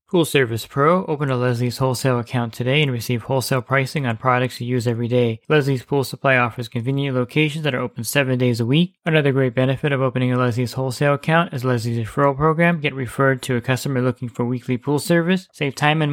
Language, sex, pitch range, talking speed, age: English, male, 125-145 Hz, 215 wpm, 20-39